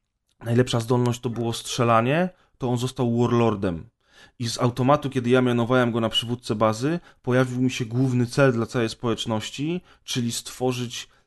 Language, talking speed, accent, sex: Polish, 155 wpm, native, male